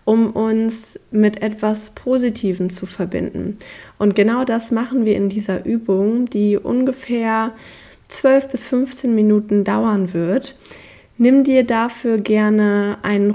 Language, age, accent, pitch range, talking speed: German, 20-39, German, 200-225 Hz, 125 wpm